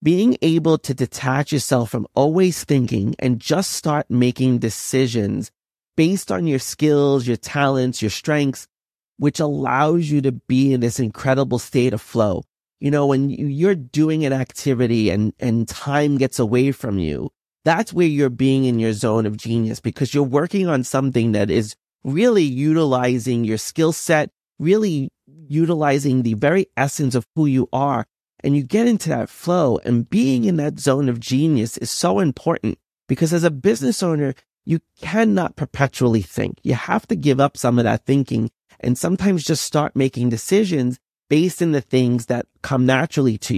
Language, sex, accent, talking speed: English, male, American, 170 wpm